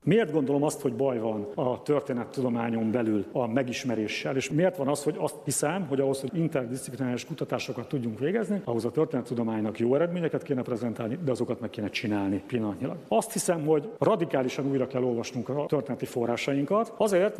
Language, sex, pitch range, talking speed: Hungarian, male, 120-155 Hz, 170 wpm